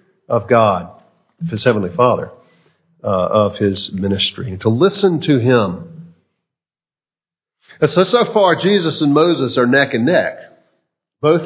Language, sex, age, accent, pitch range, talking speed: English, male, 50-69, American, 120-165 Hz, 135 wpm